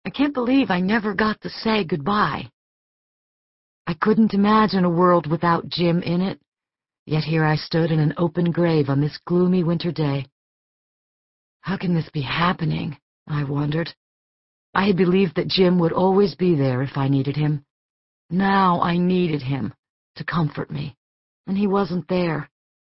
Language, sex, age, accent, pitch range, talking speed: English, female, 50-69, American, 145-185 Hz, 160 wpm